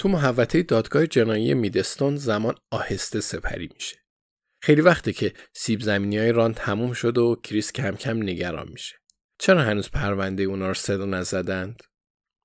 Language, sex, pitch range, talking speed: Persian, male, 100-130 Hz, 155 wpm